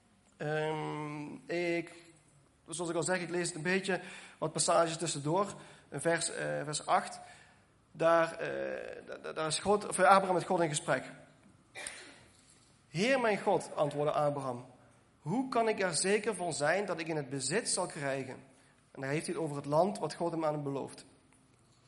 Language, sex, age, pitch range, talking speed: Dutch, male, 40-59, 150-200 Hz, 175 wpm